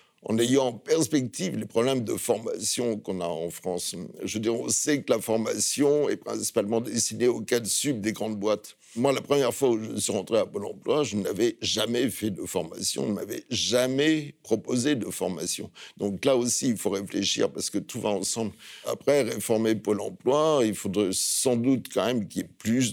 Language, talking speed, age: French, 200 wpm, 60-79